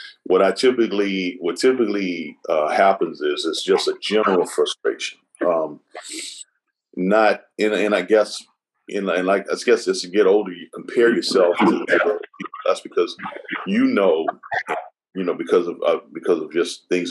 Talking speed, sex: 160 wpm, male